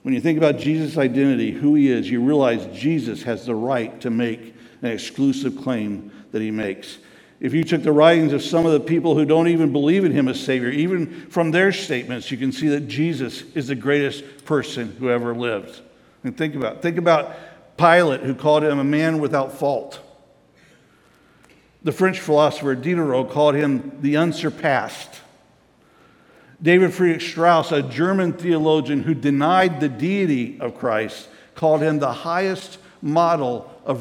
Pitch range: 140-170 Hz